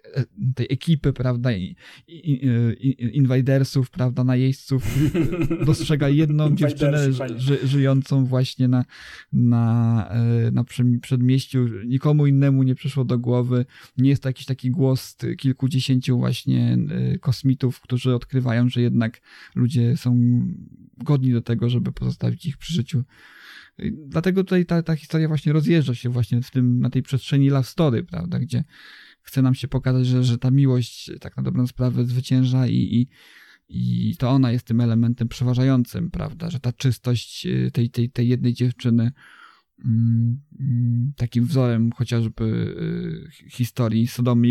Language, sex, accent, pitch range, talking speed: English, male, Polish, 120-135 Hz, 140 wpm